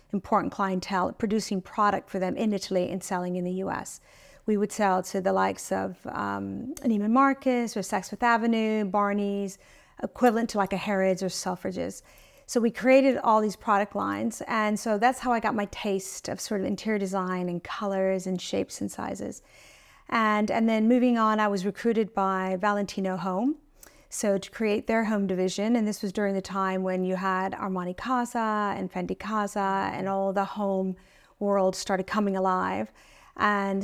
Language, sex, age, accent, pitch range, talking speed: English, female, 40-59, American, 190-225 Hz, 175 wpm